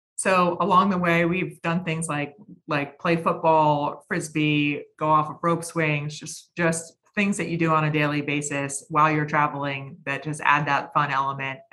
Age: 30-49